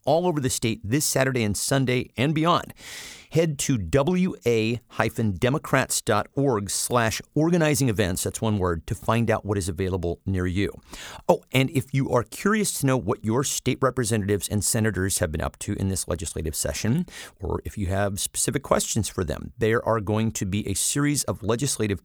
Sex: male